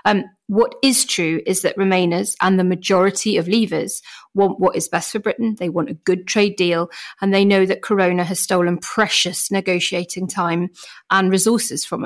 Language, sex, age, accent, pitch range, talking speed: English, female, 40-59, British, 175-210 Hz, 185 wpm